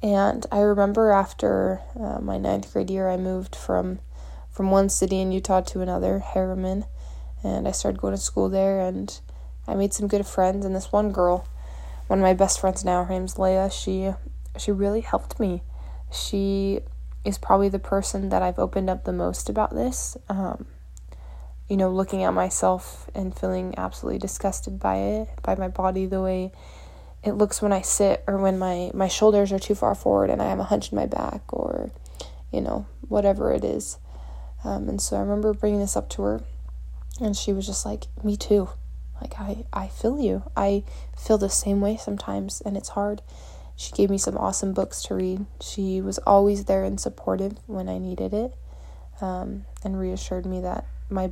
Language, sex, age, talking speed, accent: English, female, 20-39, 190 wpm, American